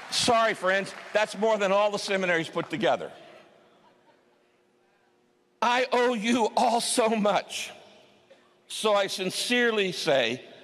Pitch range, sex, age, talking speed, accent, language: 170-245 Hz, male, 60-79, 115 wpm, American, English